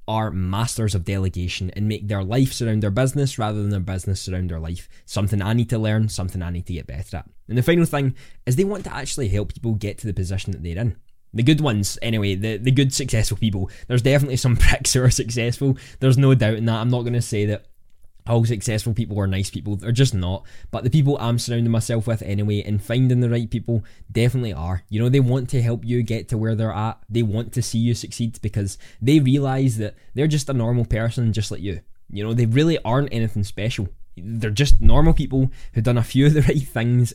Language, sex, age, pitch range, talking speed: English, male, 10-29, 105-125 Hz, 240 wpm